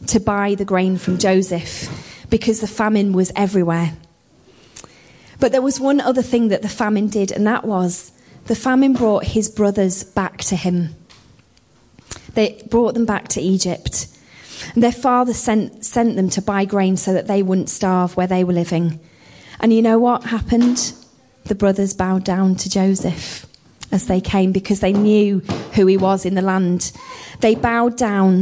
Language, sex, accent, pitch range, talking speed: English, female, British, 185-225 Hz, 175 wpm